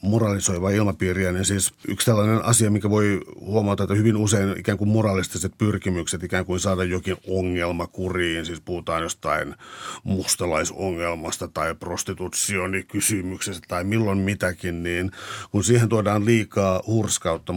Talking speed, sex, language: 130 wpm, male, Finnish